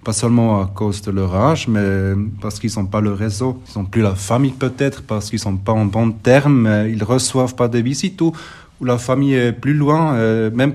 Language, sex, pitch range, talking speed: German, male, 105-130 Hz, 230 wpm